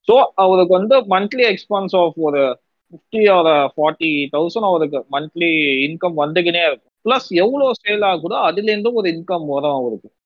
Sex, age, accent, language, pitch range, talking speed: male, 20-39, native, Tamil, 135-175 Hz, 140 wpm